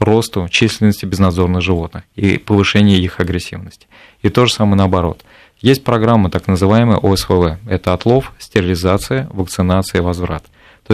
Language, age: Russian, 20-39